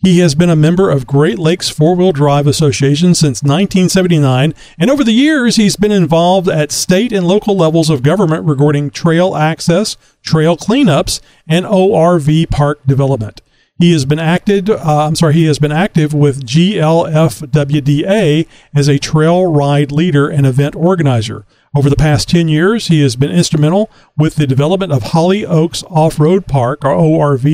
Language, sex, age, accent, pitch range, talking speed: English, male, 40-59, American, 145-180 Hz, 170 wpm